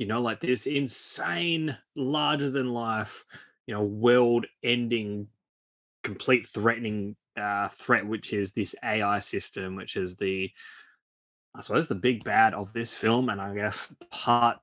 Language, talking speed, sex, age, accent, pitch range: English, 135 wpm, male, 20-39, Australian, 100-120 Hz